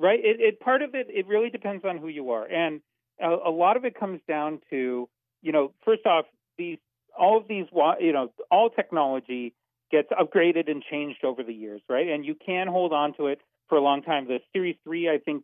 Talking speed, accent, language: 225 wpm, American, English